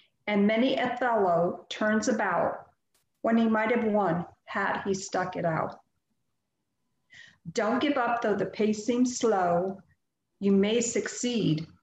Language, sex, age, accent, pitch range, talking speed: English, female, 50-69, American, 190-230 Hz, 125 wpm